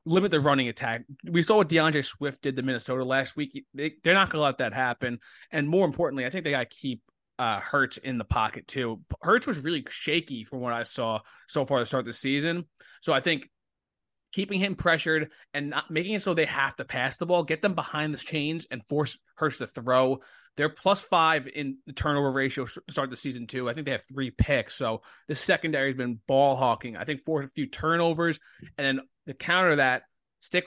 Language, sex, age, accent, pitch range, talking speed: English, male, 20-39, American, 130-160 Hz, 225 wpm